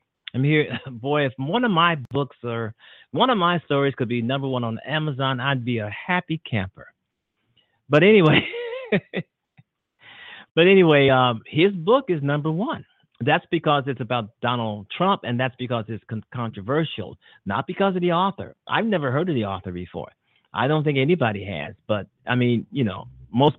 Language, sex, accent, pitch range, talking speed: English, male, American, 115-145 Hz, 175 wpm